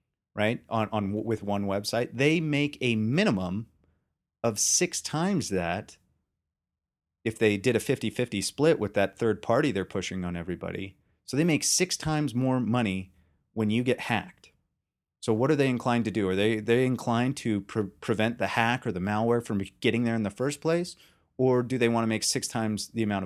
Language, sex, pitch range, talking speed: English, male, 100-135 Hz, 190 wpm